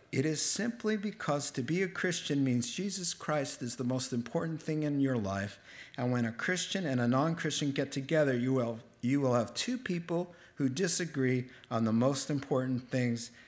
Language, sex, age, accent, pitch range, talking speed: English, male, 50-69, American, 120-175 Hz, 185 wpm